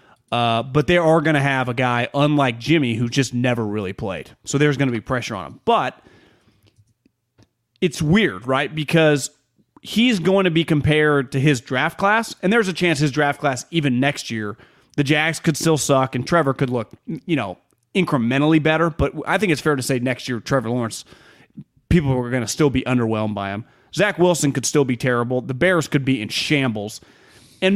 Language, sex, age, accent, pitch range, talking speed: English, male, 30-49, American, 130-175 Hz, 205 wpm